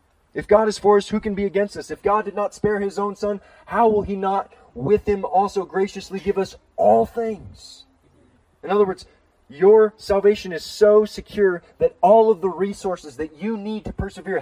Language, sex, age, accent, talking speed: English, male, 30-49, American, 200 wpm